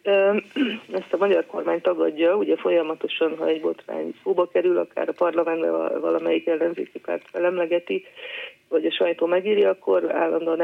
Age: 30-49